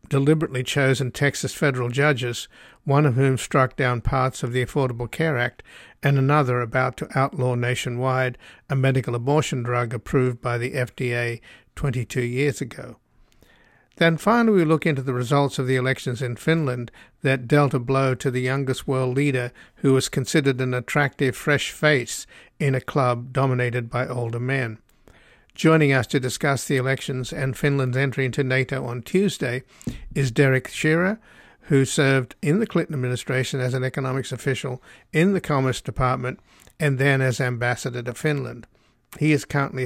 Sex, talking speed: male, 160 wpm